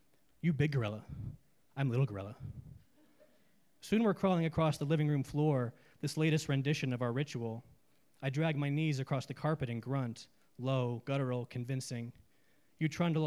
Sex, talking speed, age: male, 155 wpm, 20-39